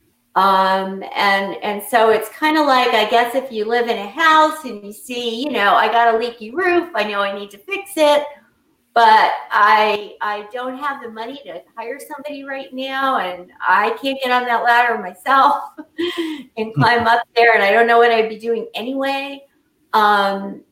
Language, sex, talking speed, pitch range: English, female, 195 wpm, 195-260 Hz